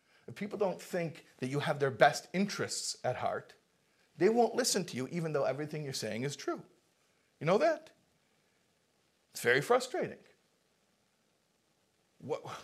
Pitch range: 175-235 Hz